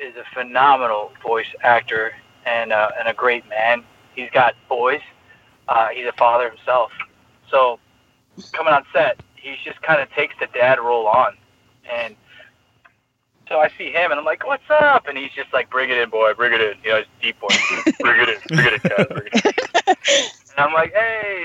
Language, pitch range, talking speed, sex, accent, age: English, 115-145 Hz, 205 wpm, male, American, 20-39